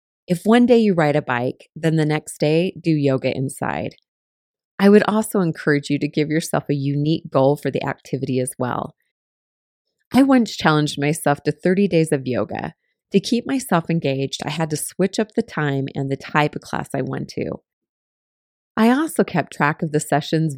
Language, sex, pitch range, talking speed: English, female, 145-180 Hz, 190 wpm